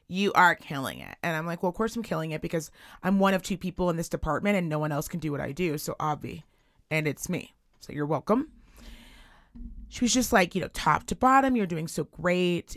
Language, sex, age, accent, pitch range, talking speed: English, female, 30-49, American, 165-215 Hz, 245 wpm